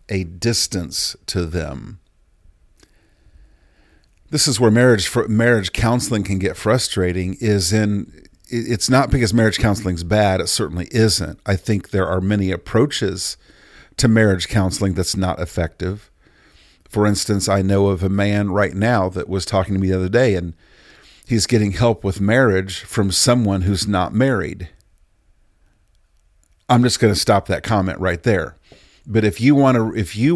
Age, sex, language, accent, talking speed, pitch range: 50-69, male, English, American, 160 wpm, 90-110 Hz